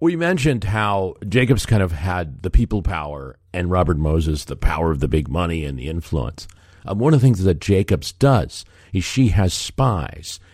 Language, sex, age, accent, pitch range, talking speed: English, male, 50-69, American, 80-100 Hz, 195 wpm